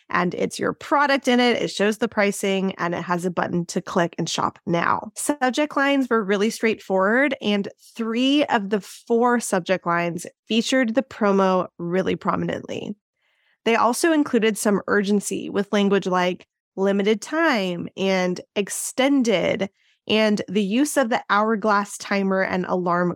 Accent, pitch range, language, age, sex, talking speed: American, 185-230 Hz, English, 20-39, female, 150 wpm